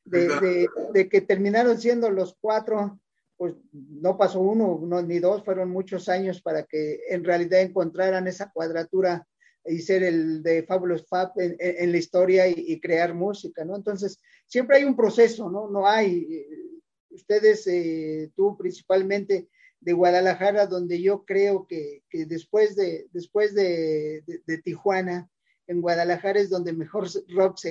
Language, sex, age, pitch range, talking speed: English, male, 40-59, 175-215 Hz, 150 wpm